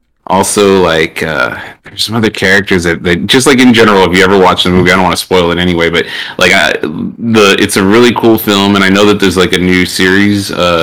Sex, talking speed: male, 245 wpm